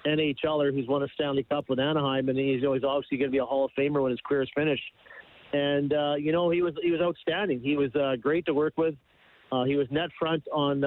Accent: American